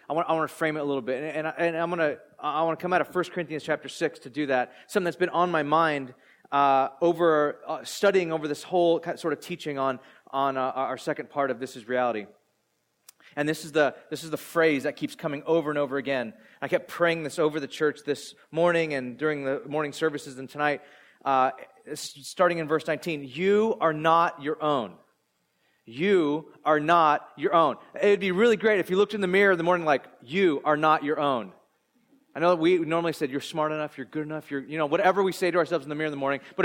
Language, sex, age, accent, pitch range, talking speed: English, male, 30-49, American, 145-185 Hz, 240 wpm